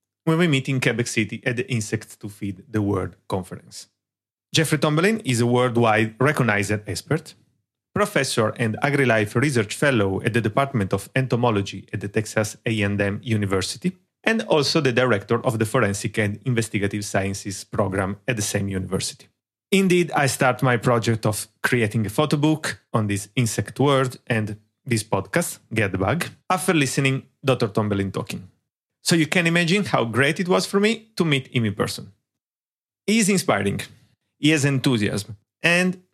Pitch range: 105-150 Hz